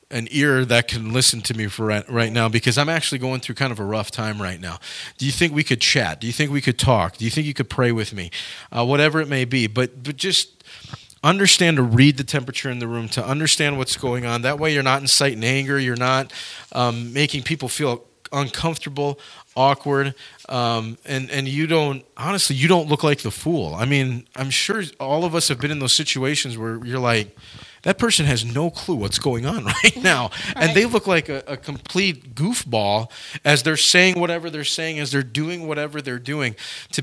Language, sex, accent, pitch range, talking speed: English, male, American, 120-150 Hz, 220 wpm